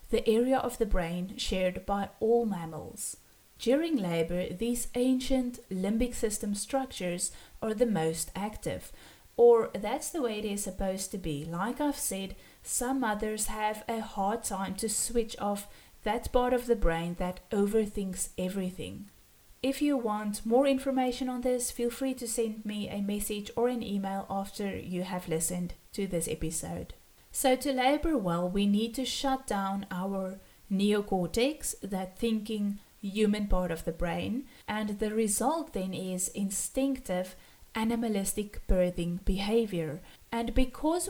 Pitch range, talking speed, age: 185-240 Hz, 150 wpm, 30-49